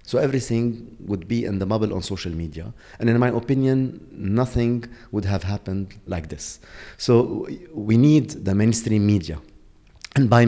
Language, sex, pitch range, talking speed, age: English, male, 100-130 Hz, 160 wpm, 30-49